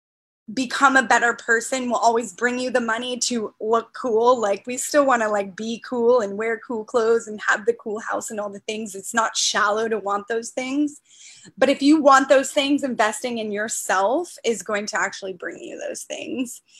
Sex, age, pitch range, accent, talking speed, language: female, 20-39, 220-270 Hz, American, 205 wpm, English